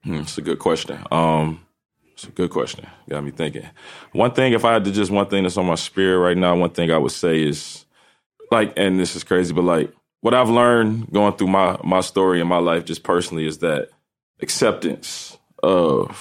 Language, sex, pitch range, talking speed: English, male, 80-105 Hz, 210 wpm